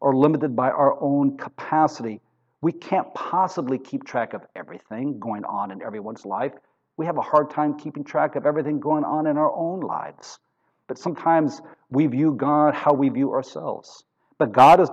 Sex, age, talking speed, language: male, 50-69, 180 wpm, English